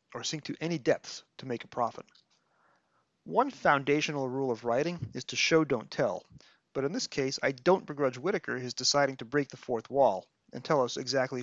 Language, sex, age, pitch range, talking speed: English, male, 30-49, 125-160 Hz, 200 wpm